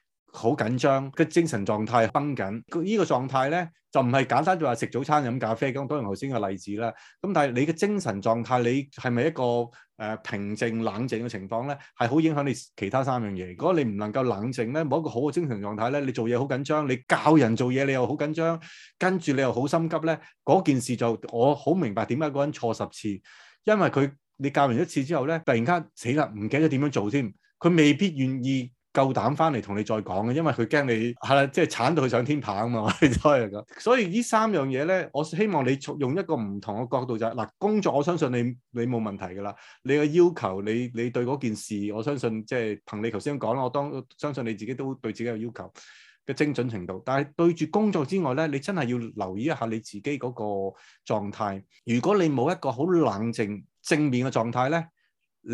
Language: Chinese